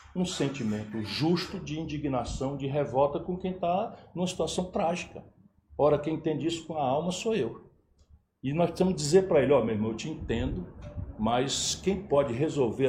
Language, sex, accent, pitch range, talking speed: Portuguese, male, Brazilian, 125-190 Hz, 180 wpm